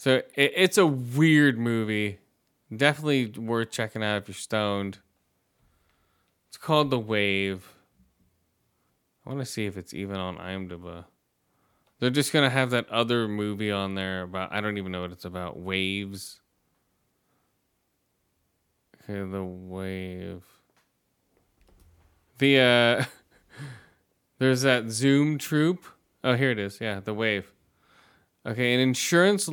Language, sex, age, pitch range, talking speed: English, male, 20-39, 95-125 Hz, 130 wpm